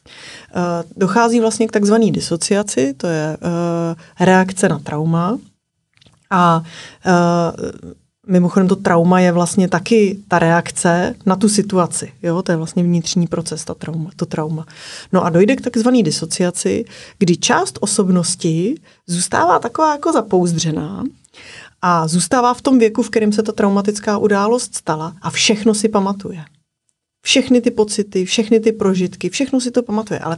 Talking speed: 135 wpm